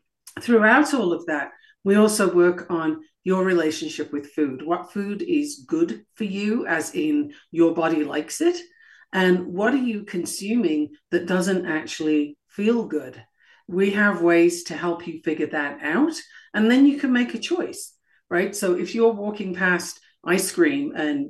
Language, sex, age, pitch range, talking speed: English, female, 50-69, 165-250 Hz, 165 wpm